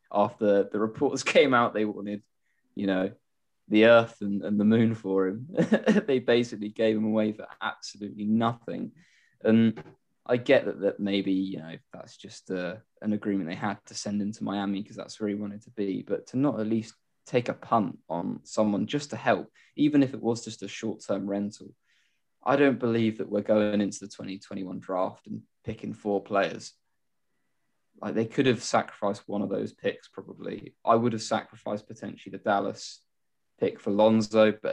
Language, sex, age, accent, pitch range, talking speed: English, male, 20-39, British, 100-115 Hz, 185 wpm